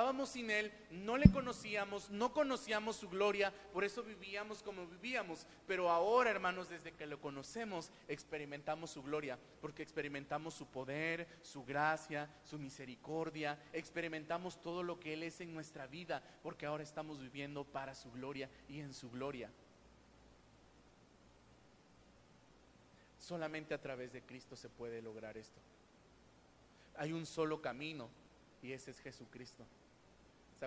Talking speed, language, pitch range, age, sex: 140 wpm, Spanish, 140-180 Hz, 30-49, male